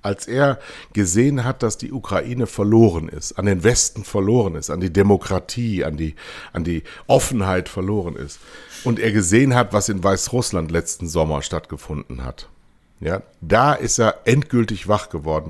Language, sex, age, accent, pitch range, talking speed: German, male, 60-79, German, 90-115 Hz, 160 wpm